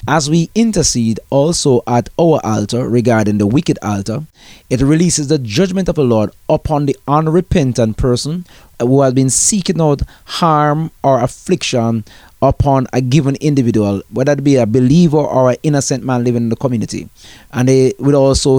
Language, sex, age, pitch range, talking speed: English, male, 30-49, 110-140 Hz, 160 wpm